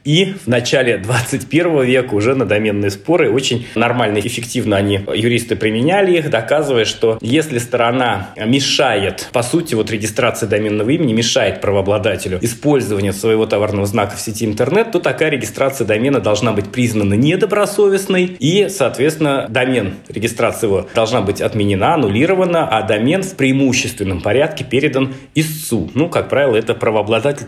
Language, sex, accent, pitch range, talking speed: Russian, male, native, 110-155 Hz, 140 wpm